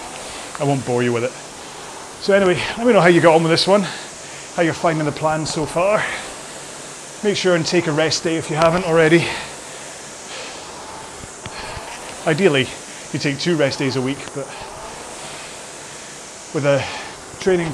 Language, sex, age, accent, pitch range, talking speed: English, male, 30-49, British, 125-155 Hz, 160 wpm